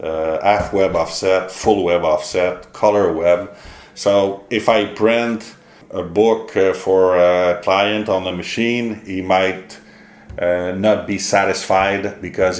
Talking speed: 140 wpm